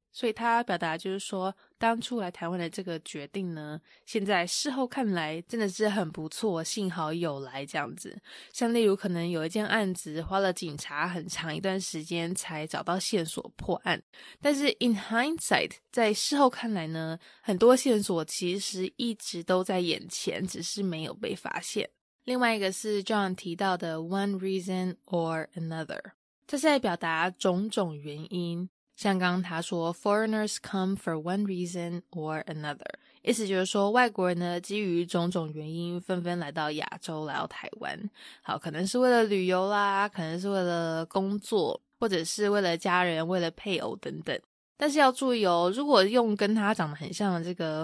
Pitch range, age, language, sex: 170-210 Hz, 20-39, English, female